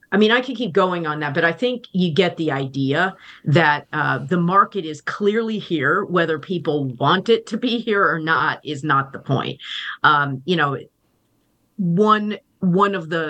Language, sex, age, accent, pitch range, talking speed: English, female, 40-59, American, 140-180 Hz, 190 wpm